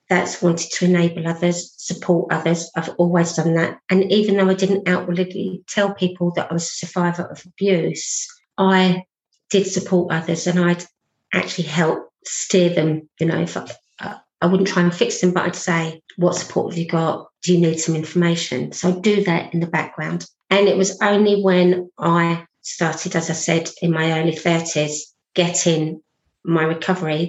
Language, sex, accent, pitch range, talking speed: English, female, British, 170-190 Hz, 185 wpm